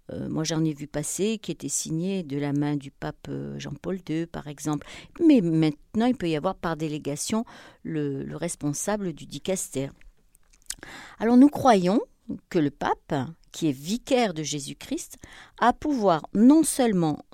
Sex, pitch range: female, 150-225 Hz